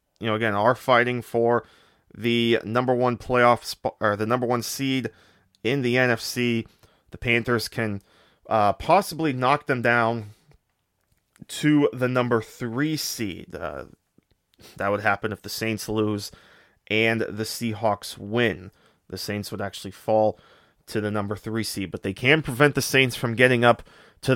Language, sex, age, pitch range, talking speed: English, male, 30-49, 105-125 Hz, 155 wpm